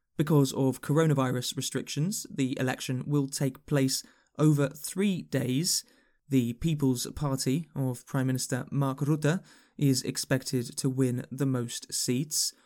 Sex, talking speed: male, 130 wpm